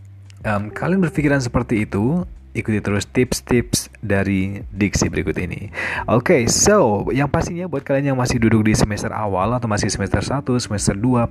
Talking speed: 165 wpm